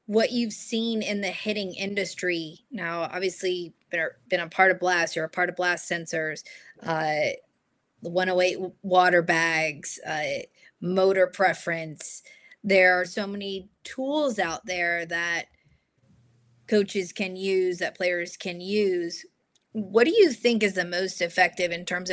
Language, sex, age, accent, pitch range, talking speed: English, female, 20-39, American, 170-195 Hz, 145 wpm